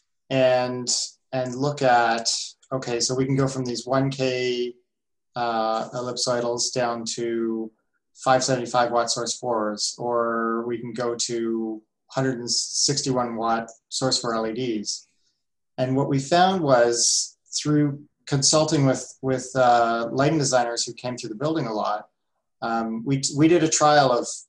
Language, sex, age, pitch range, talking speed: English, male, 30-49, 120-135 Hz, 135 wpm